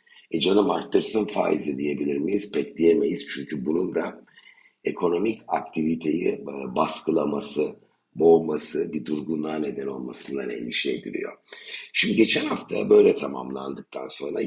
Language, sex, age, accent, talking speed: Turkish, male, 60-79, native, 110 wpm